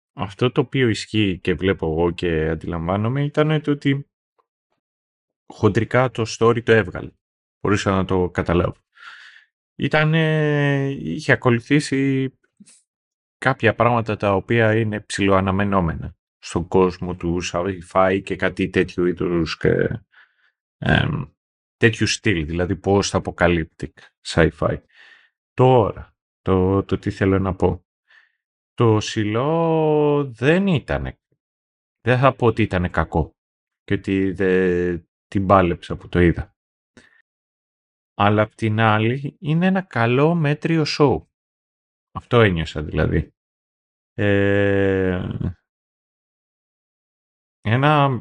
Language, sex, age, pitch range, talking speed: Greek, male, 30-49, 90-125 Hz, 100 wpm